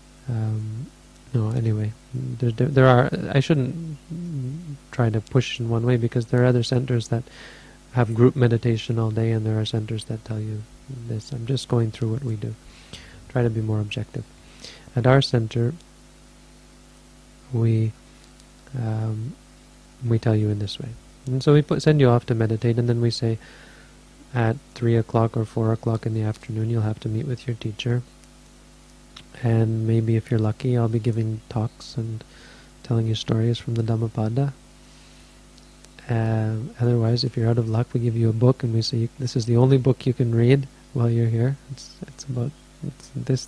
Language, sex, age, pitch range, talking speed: English, male, 30-49, 115-130 Hz, 185 wpm